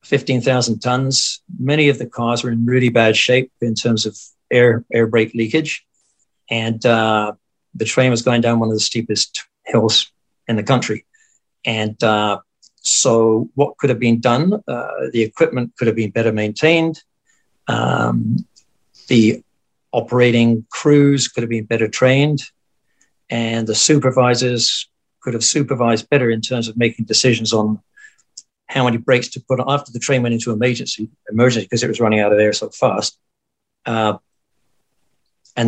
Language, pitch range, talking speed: English, 115-130 Hz, 160 wpm